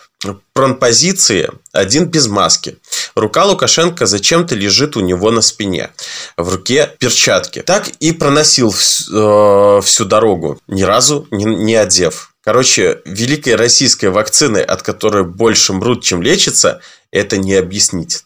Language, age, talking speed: Russian, 20-39, 120 wpm